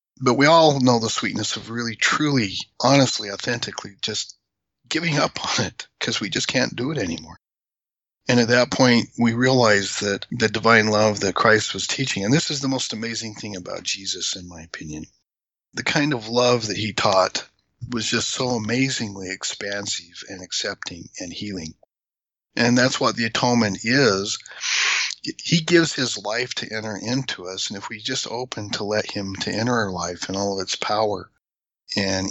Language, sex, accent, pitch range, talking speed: English, male, American, 100-125 Hz, 180 wpm